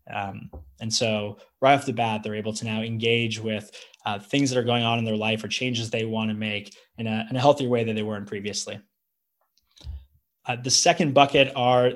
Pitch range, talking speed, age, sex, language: 110-125 Hz, 215 wpm, 20-39, male, English